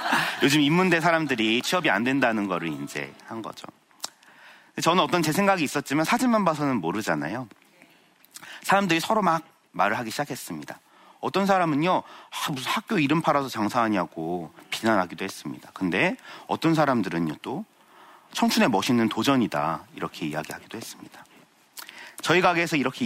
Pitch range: 115-180 Hz